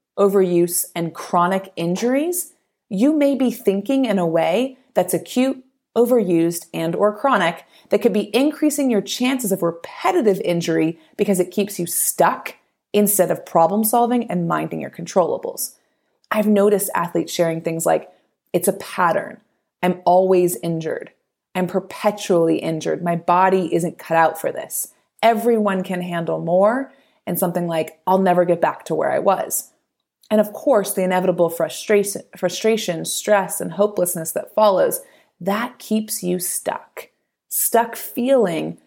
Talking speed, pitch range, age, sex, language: 145 wpm, 175-235 Hz, 30-49, female, English